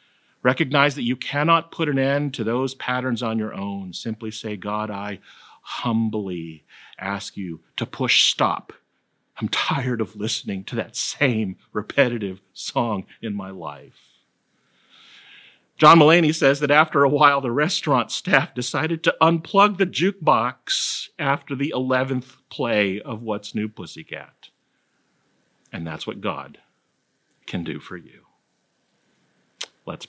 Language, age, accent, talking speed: English, 50-69, American, 135 wpm